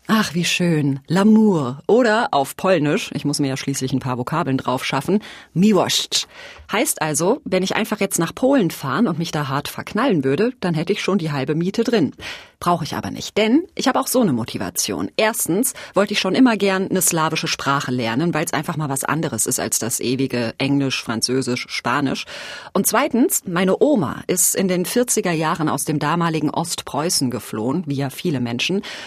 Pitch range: 140-205 Hz